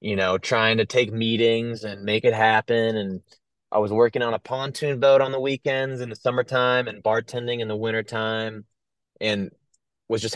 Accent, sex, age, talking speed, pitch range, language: American, male, 20-39, 185 wpm, 105-135 Hz, English